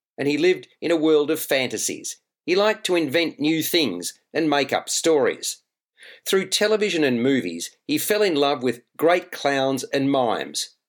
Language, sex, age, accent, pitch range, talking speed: English, male, 50-69, Australian, 135-175 Hz, 170 wpm